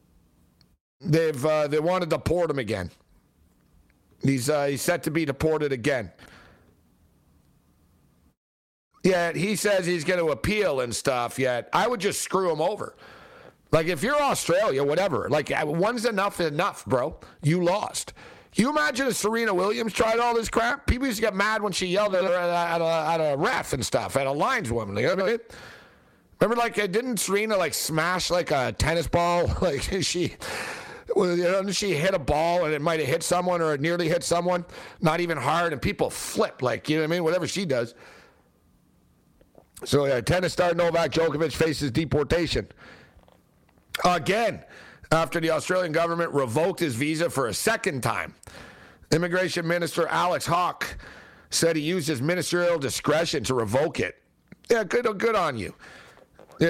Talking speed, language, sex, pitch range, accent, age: 170 wpm, English, male, 150-185 Hz, American, 50-69